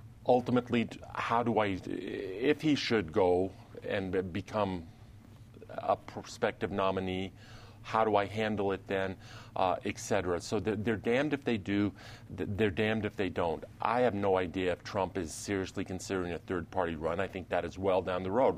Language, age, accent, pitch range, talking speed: English, 40-59, American, 90-110 Hz, 170 wpm